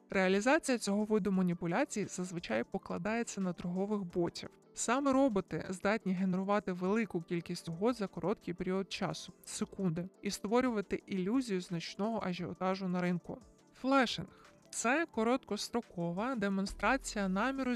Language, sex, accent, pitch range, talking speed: Ukrainian, male, native, 185-230 Hz, 115 wpm